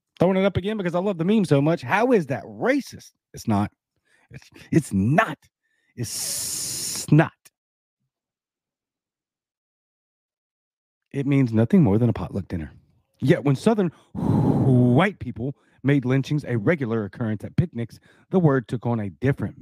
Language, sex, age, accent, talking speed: English, male, 40-59, American, 145 wpm